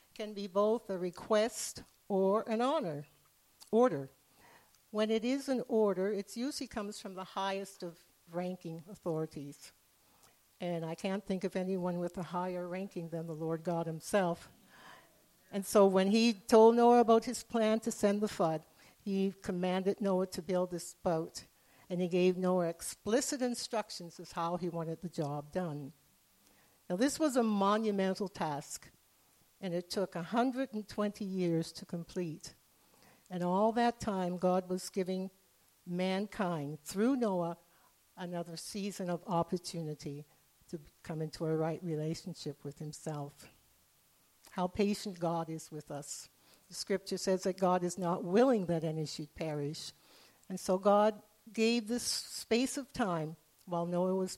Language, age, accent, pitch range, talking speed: English, 60-79, American, 170-210 Hz, 150 wpm